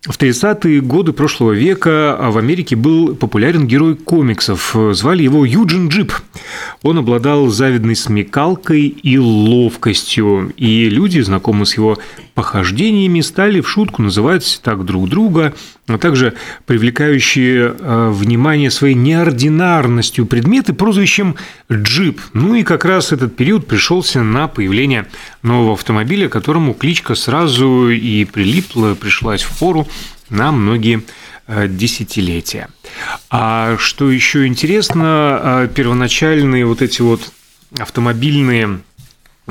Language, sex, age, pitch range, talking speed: Russian, male, 30-49, 115-150 Hz, 110 wpm